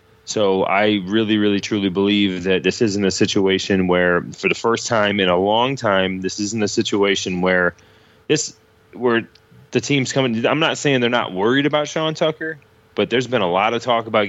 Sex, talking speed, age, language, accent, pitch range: male, 195 wpm, 20-39, English, American, 95-110 Hz